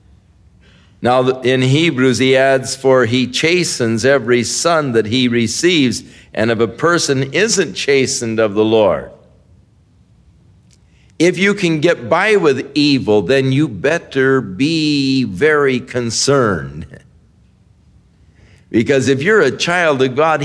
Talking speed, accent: 125 wpm, American